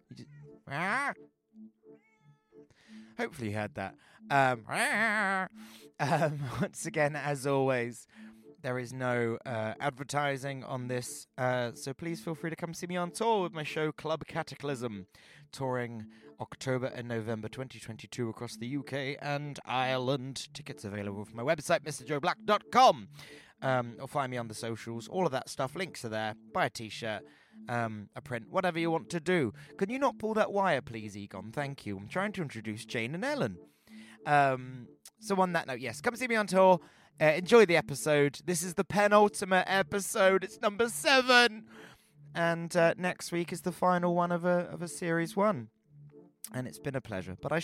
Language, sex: English, male